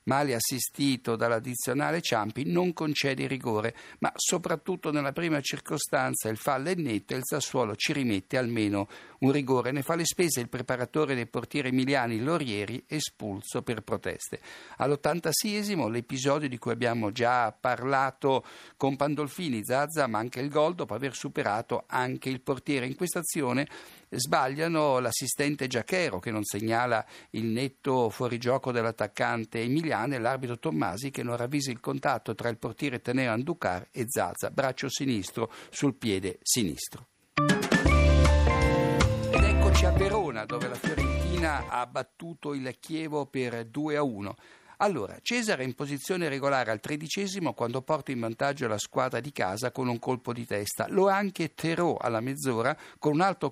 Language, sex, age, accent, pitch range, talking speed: Italian, male, 60-79, native, 115-150 Hz, 150 wpm